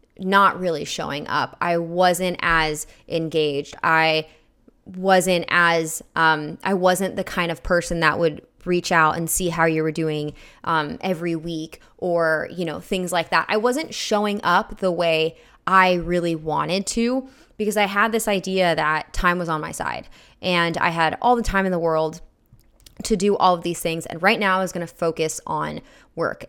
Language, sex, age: English, female, 20-39